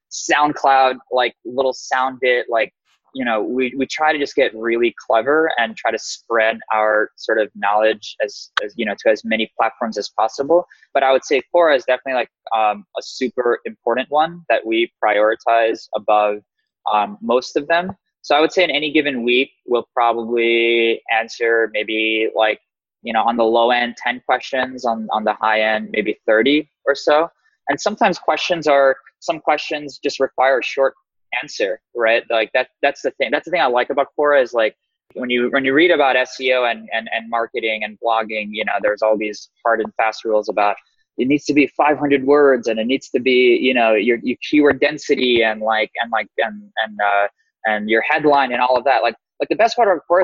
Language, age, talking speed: English, 20-39, 205 wpm